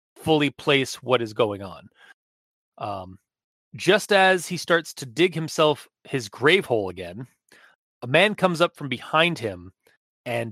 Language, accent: English, American